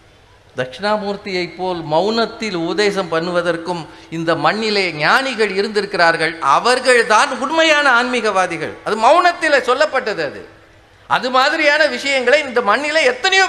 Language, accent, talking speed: Tamil, native, 100 wpm